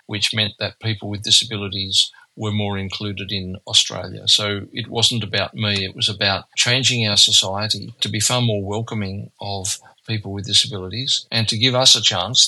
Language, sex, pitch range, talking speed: English, male, 105-115 Hz, 180 wpm